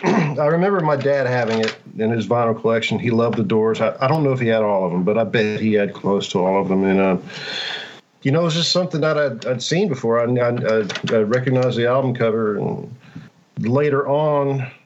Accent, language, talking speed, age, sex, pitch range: American, English, 230 wpm, 50-69, male, 110-135 Hz